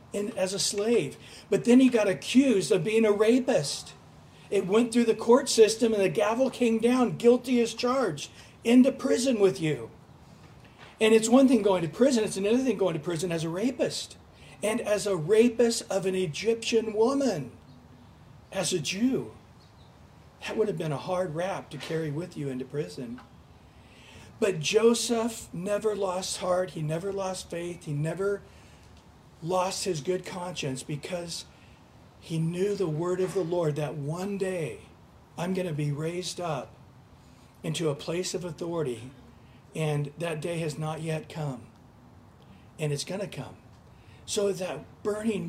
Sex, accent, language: male, American, English